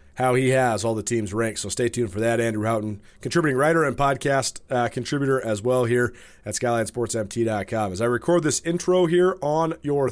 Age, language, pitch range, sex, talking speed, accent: 30-49, English, 115-145 Hz, male, 195 wpm, American